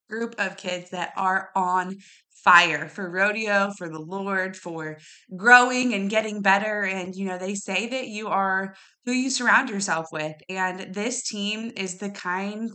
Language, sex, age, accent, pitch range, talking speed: English, female, 20-39, American, 190-245 Hz, 170 wpm